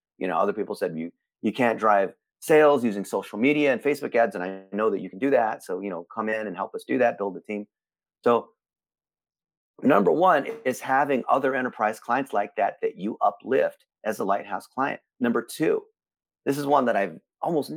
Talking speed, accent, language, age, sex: 210 wpm, American, English, 30-49, male